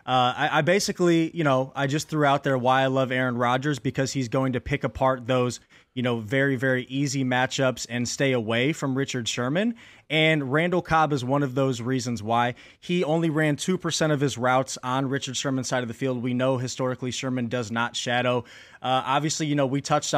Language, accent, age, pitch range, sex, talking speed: English, American, 20-39, 130-160 Hz, male, 210 wpm